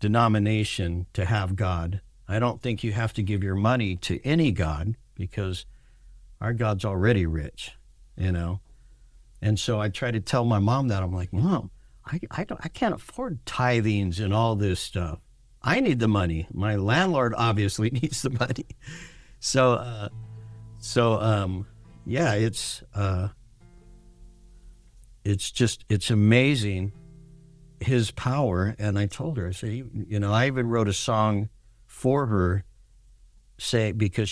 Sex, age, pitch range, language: male, 60-79, 105-130 Hz, English